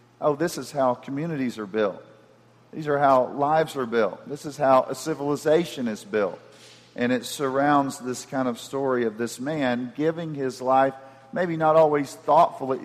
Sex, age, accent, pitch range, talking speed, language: male, 50-69, American, 120-145 Hz, 175 wpm, English